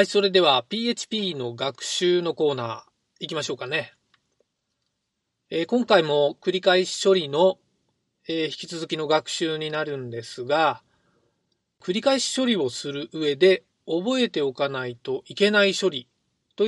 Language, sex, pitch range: Japanese, male, 160-245 Hz